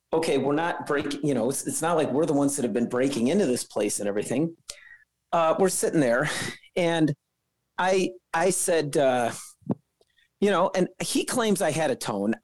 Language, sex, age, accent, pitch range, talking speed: English, male, 40-59, American, 145-215 Hz, 195 wpm